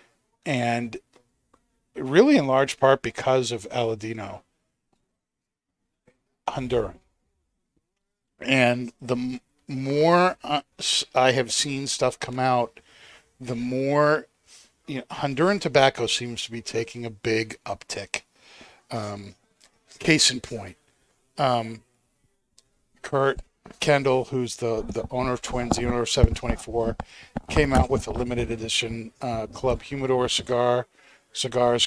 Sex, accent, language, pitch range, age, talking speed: male, American, English, 115-130 Hz, 50-69, 110 wpm